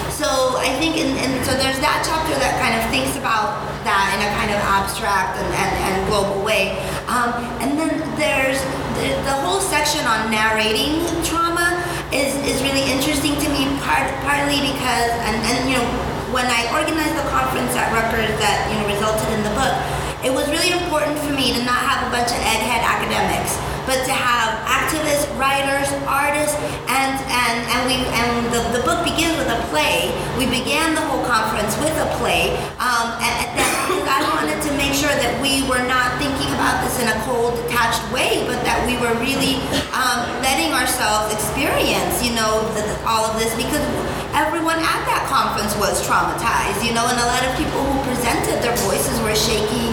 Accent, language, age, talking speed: American, English, 30-49, 190 wpm